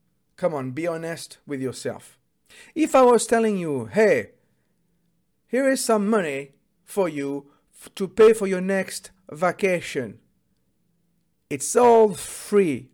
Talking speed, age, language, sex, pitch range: 125 wpm, 50-69, English, male, 150-210 Hz